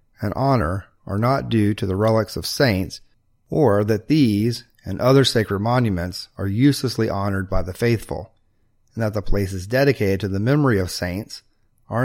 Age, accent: 30-49, American